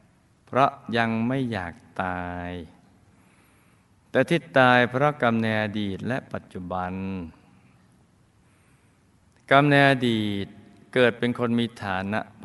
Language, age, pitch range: Thai, 20-39, 95-120 Hz